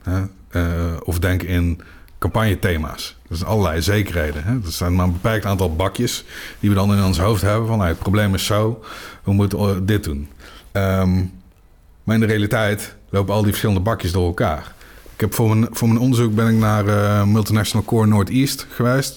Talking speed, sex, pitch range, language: 185 wpm, male, 90-115 Hz, Dutch